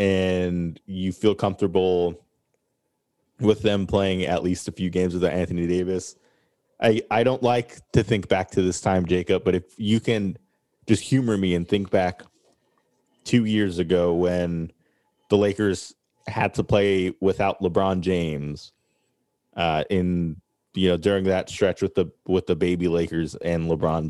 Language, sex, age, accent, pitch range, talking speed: English, male, 20-39, American, 85-100 Hz, 155 wpm